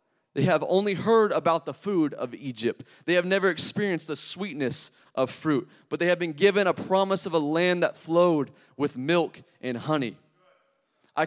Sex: male